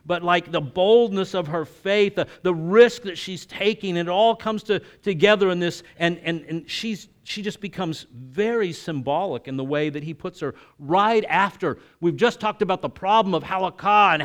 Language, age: English, 50-69